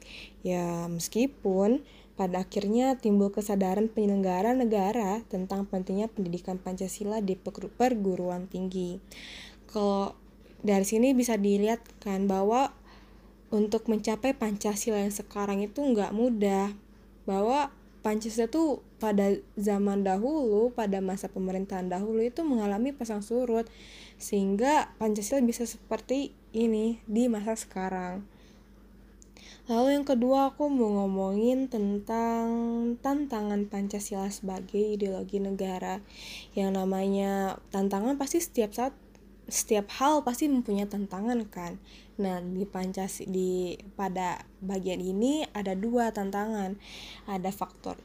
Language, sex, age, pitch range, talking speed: Indonesian, female, 10-29, 195-230 Hz, 110 wpm